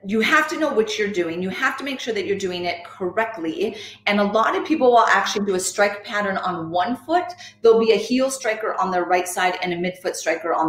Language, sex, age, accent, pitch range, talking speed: English, female, 30-49, American, 175-225 Hz, 255 wpm